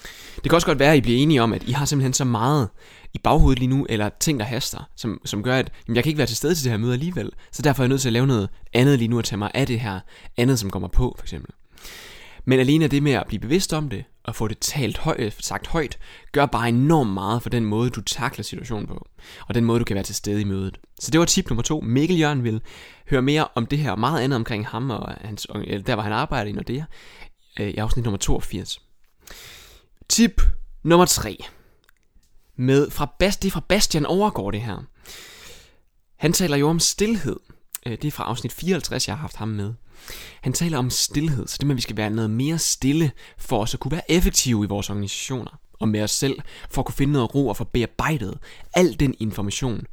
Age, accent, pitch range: 20-39, native, 110-150 Hz